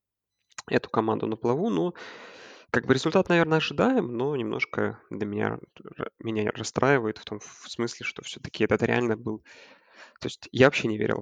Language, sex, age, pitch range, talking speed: Russian, male, 20-39, 110-130 Hz, 165 wpm